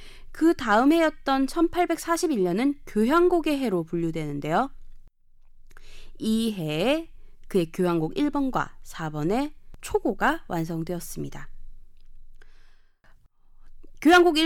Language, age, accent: Korean, 20-39, native